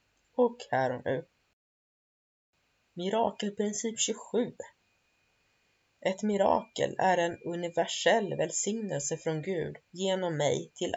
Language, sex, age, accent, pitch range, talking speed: Swedish, female, 30-49, native, 150-195 Hz, 90 wpm